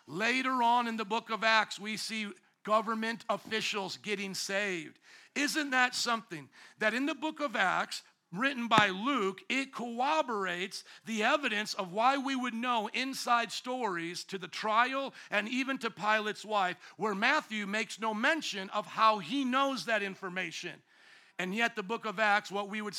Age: 50-69